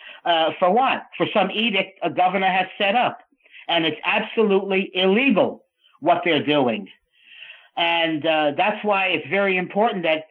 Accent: American